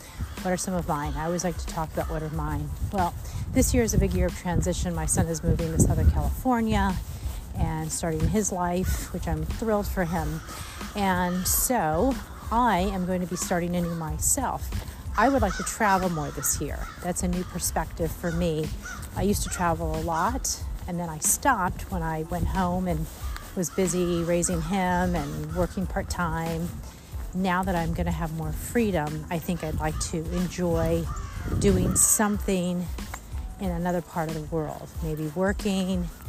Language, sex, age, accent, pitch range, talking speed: English, female, 40-59, American, 165-190 Hz, 185 wpm